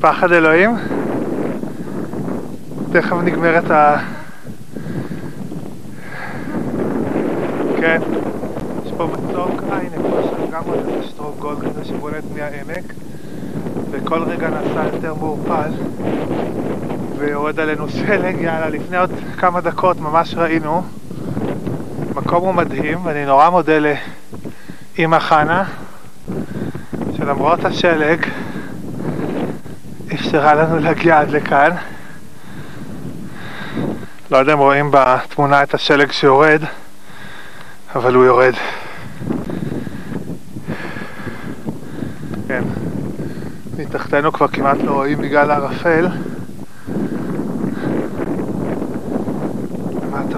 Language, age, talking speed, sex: English, 20-39, 75 wpm, male